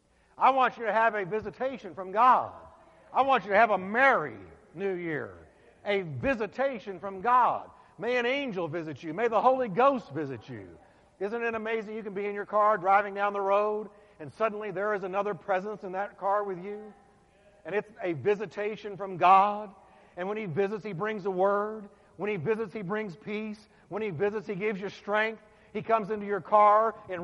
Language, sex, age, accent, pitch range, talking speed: English, male, 60-79, American, 200-230 Hz, 200 wpm